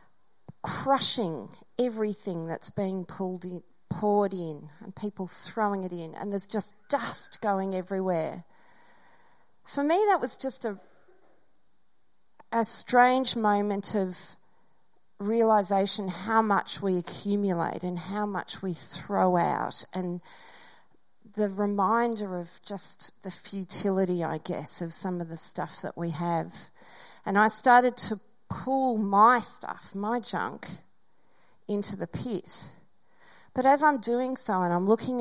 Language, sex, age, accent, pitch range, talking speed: English, female, 40-59, Australian, 180-215 Hz, 130 wpm